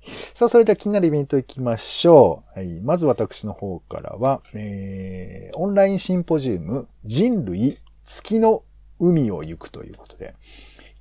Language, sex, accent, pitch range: Japanese, male, native, 115-180 Hz